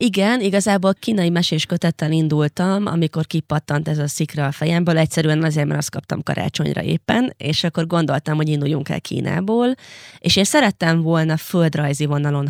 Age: 20-39